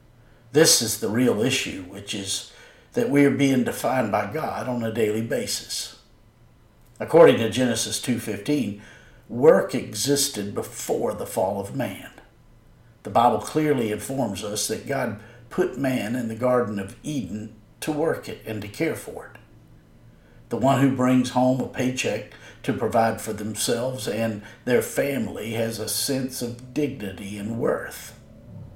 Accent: American